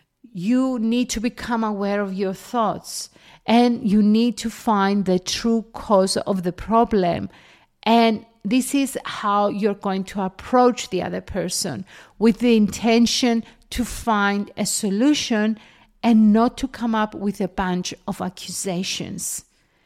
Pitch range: 200-250 Hz